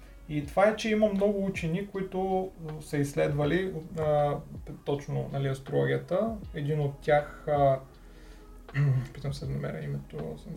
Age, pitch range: 30-49, 150-185 Hz